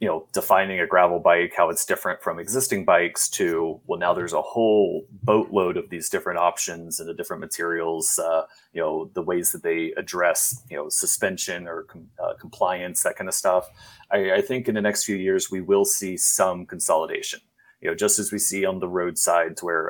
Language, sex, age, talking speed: Danish, male, 30-49, 210 wpm